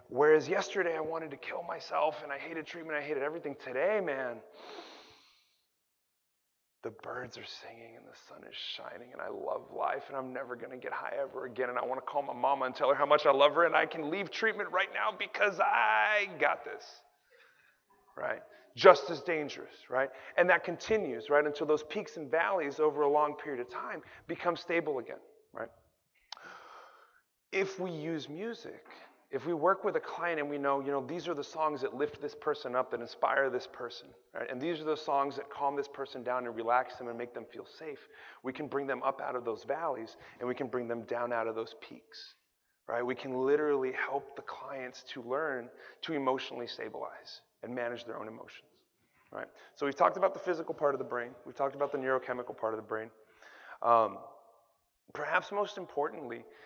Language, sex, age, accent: English, male, 30-49, American